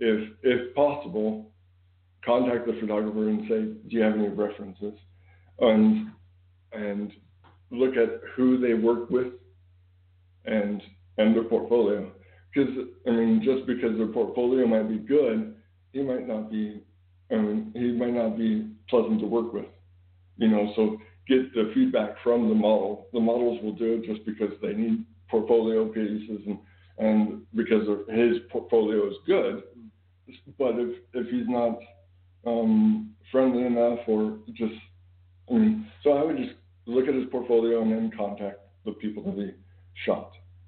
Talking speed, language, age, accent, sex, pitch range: 155 wpm, English, 60-79, American, male, 100-115 Hz